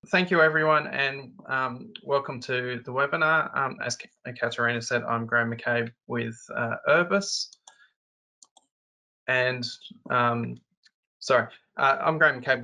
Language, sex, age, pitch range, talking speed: English, male, 20-39, 115-135 Hz, 125 wpm